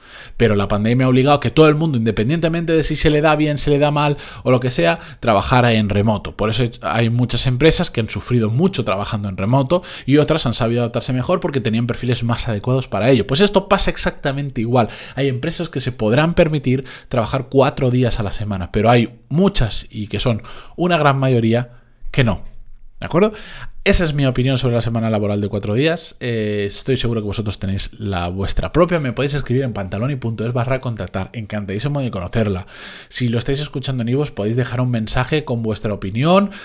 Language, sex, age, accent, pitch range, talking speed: Spanish, male, 20-39, Spanish, 110-140 Hz, 205 wpm